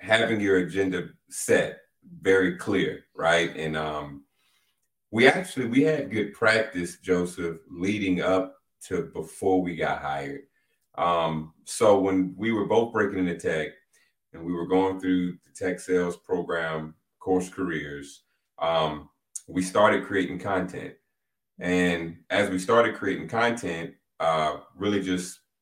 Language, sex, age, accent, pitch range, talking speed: English, male, 30-49, American, 85-100 Hz, 135 wpm